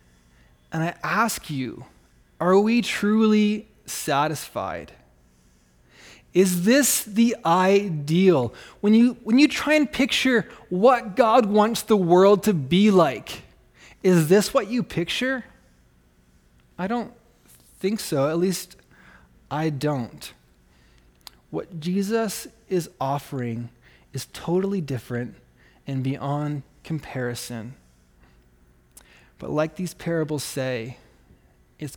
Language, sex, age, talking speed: English, male, 20-39, 105 wpm